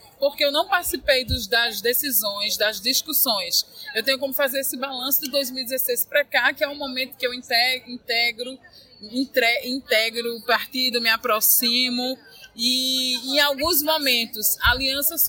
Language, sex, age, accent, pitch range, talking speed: Portuguese, female, 20-39, Brazilian, 245-295 Hz, 140 wpm